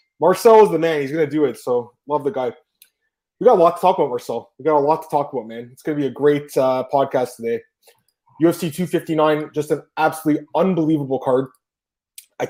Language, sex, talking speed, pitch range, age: English, male, 220 wpm, 135-165 Hz, 20-39